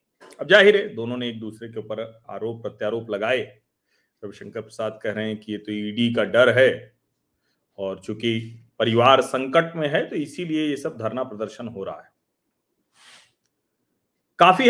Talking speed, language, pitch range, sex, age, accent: 165 wpm, Hindi, 120-185 Hz, male, 40-59, native